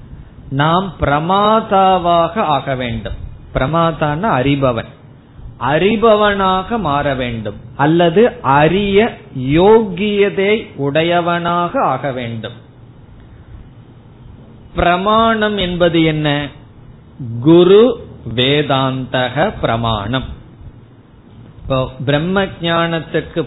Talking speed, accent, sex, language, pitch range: 60 wpm, native, male, Tamil, 130-185 Hz